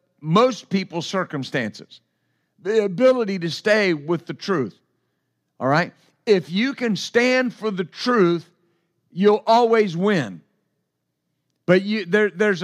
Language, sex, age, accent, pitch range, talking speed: English, male, 50-69, American, 170-225 Hz, 115 wpm